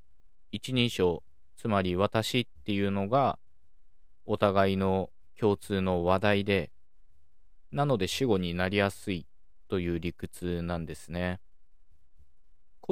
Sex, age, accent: male, 20-39, native